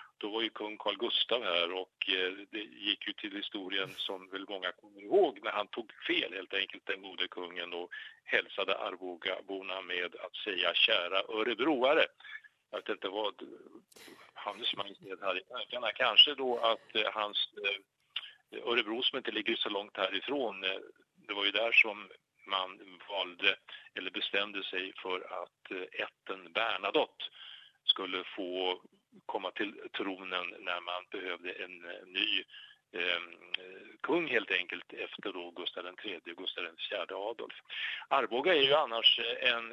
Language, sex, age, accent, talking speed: English, male, 50-69, Norwegian, 145 wpm